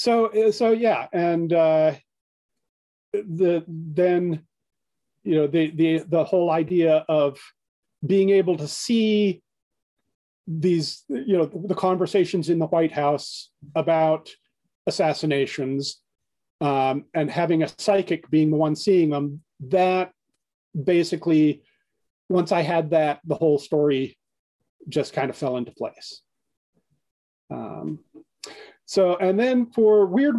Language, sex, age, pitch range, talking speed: English, male, 40-59, 150-195 Hz, 120 wpm